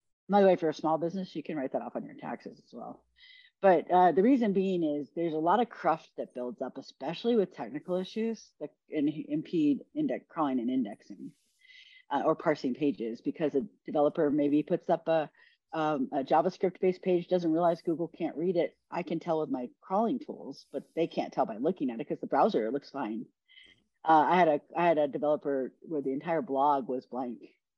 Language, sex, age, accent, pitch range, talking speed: English, female, 40-59, American, 140-190 Hz, 210 wpm